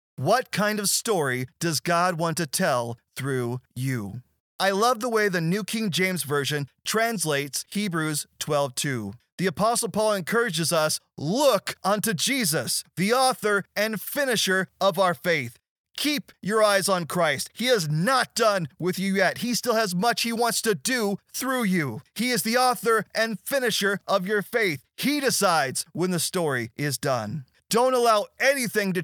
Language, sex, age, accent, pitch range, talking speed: English, male, 30-49, American, 145-205 Hz, 165 wpm